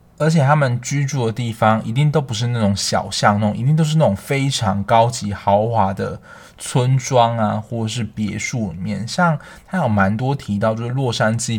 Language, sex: Chinese, male